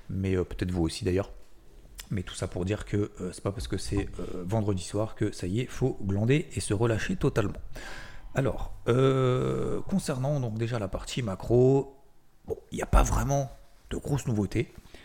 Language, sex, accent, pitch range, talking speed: French, male, French, 95-120 Hz, 200 wpm